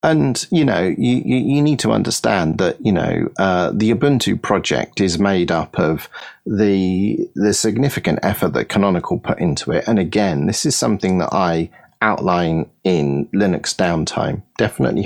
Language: English